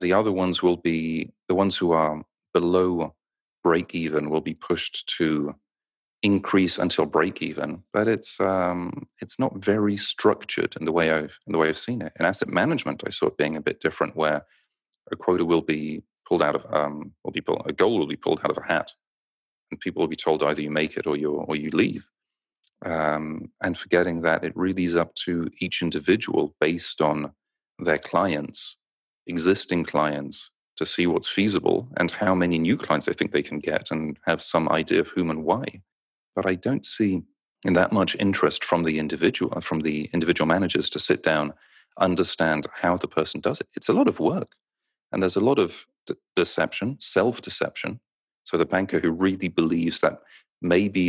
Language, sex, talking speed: English, male, 190 wpm